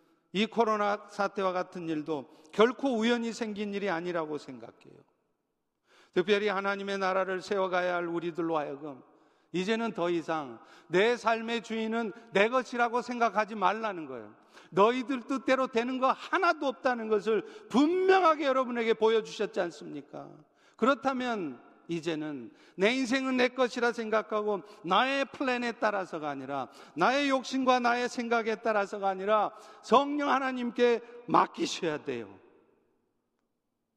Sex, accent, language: male, native, Korean